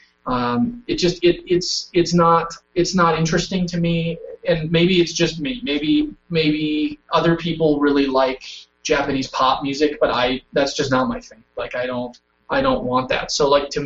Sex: male